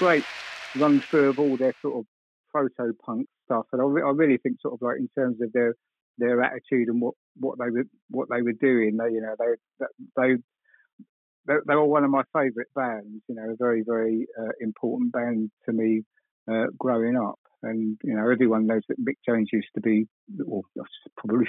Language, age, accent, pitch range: English, 50-69, British, 110-130 Hz